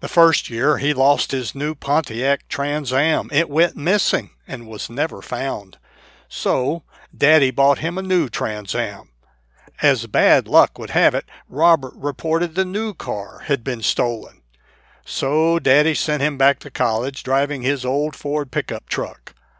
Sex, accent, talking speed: male, American, 160 wpm